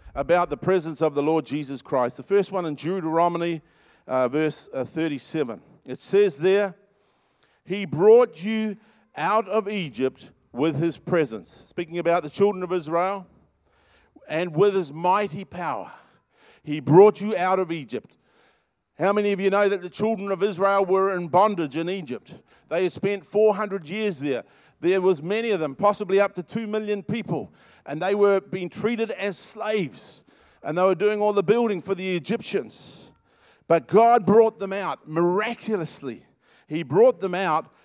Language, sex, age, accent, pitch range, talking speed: English, male, 50-69, Australian, 160-205 Hz, 165 wpm